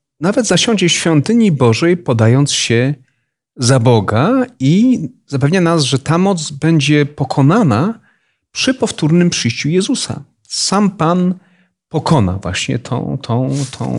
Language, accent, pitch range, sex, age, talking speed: Polish, native, 120-170 Hz, male, 40-59, 120 wpm